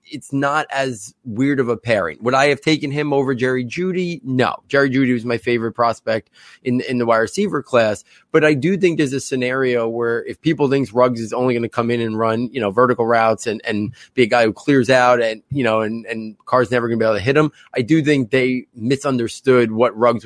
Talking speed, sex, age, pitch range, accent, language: 235 wpm, male, 30-49, 115-140 Hz, American, English